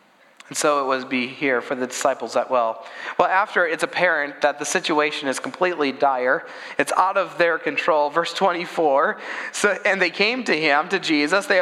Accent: American